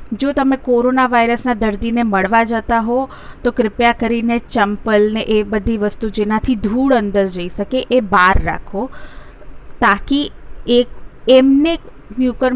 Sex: female